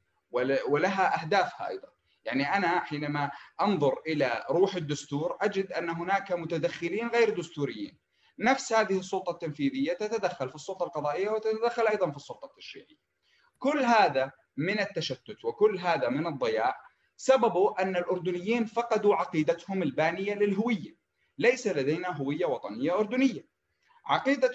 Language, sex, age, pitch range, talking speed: Arabic, male, 30-49, 155-230 Hz, 120 wpm